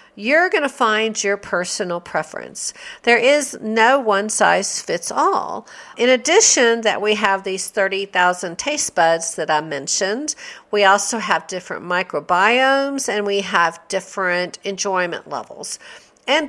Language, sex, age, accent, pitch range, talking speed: English, female, 50-69, American, 195-265 Hz, 140 wpm